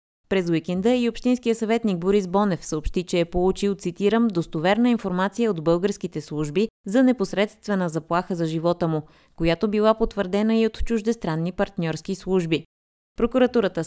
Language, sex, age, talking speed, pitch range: Bulgarian, female, 20-39, 140 wpm, 165-215 Hz